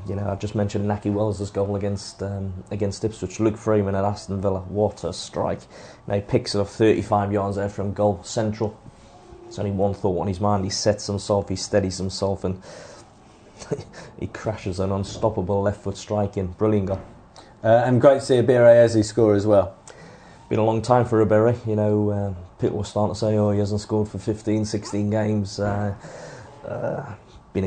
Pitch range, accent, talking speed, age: 100-110 Hz, British, 190 wpm, 20-39